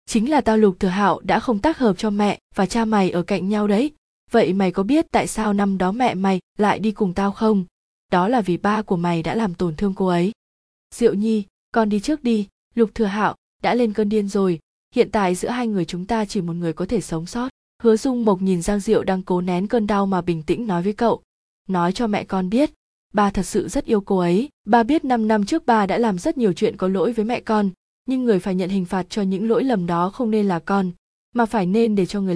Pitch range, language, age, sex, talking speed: 185-225 Hz, Vietnamese, 20-39, female, 260 wpm